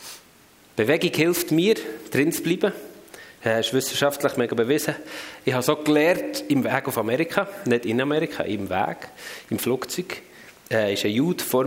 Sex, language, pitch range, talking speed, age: male, German, 120-165 Hz, 155 wpm, 30-49